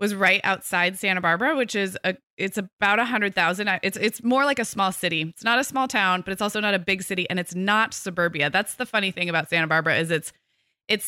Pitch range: 170-210 Hz